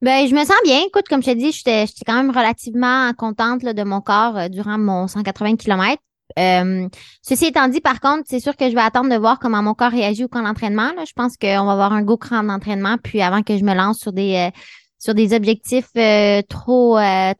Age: 20-39